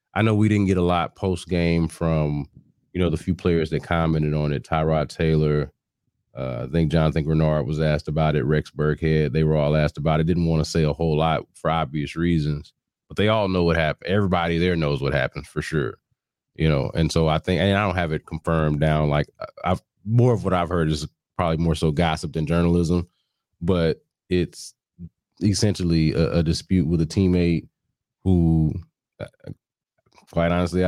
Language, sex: English, male